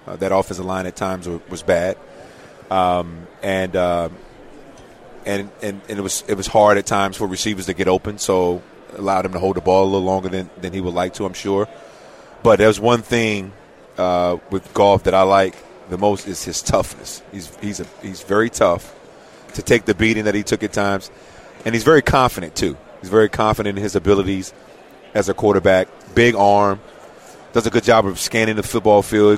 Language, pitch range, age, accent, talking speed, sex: English, 95-110 Hz, 30-49, American, 205 wpm, male